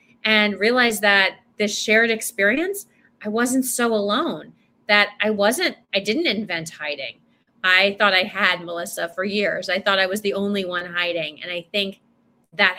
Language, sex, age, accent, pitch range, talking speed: English, female, 30-49, American, 195-240 Hz, 170 wpm